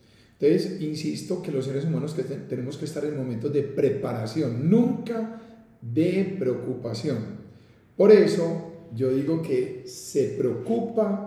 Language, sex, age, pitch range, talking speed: Spanish, male, 40-59, 125-170 Hz, 130 wpm